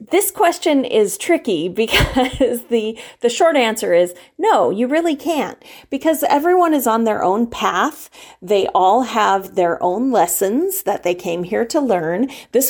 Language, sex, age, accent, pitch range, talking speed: English, female, 30-49, American, 190-285 Hz, 160 wpm